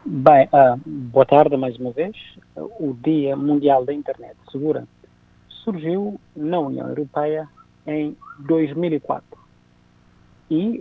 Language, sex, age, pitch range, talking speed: Portuguese, male, 50-69, 145-180 Hz, 105 wpm